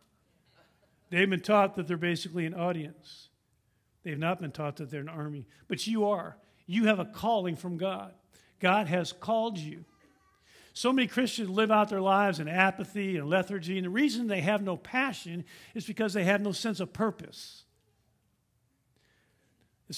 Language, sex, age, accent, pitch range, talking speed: English, male, 50-69, American, 160-220 Hz, 170 wpm